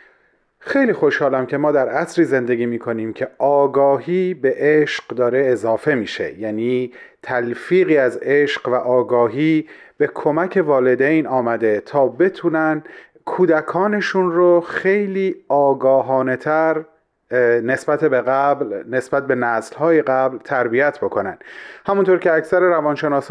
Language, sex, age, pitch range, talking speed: Persian, male, 30-49, 130-175 Hz, 115 wpm